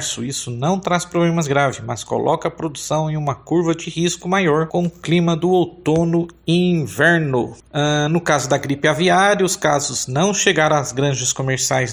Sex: male